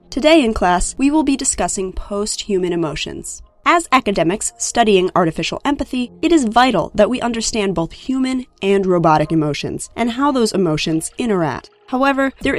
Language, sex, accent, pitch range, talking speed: English, female, American, 165-250 Hz, 155 wpm